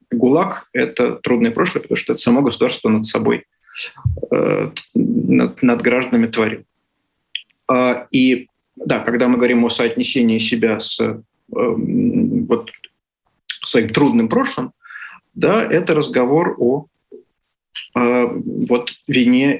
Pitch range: 115-135 Hz